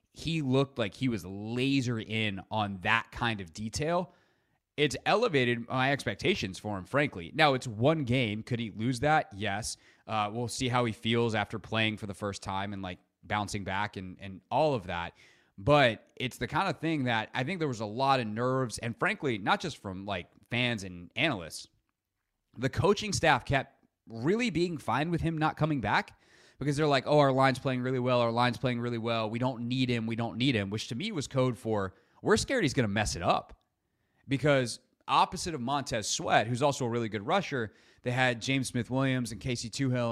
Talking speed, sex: 210 wpm, male